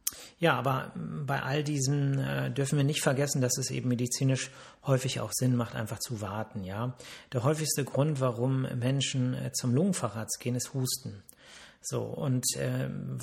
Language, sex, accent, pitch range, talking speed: German, male, German, 120-140 Hz, 155 wpm